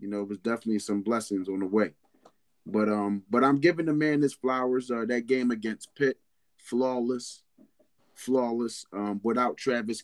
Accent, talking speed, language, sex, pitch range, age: American, 175 wpm, English, male, 105-130 Hz, 30-49